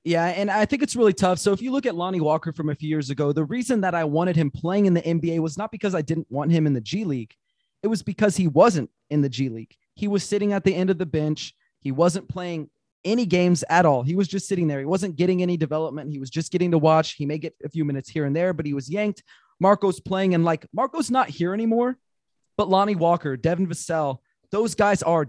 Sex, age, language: male, 30-49, English